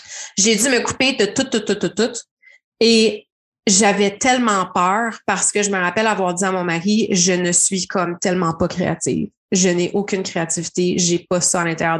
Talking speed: 205 wpm